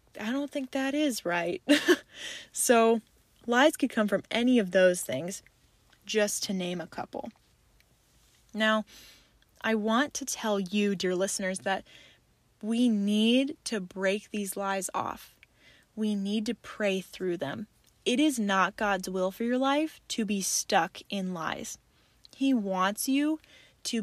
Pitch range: 195-255 Hz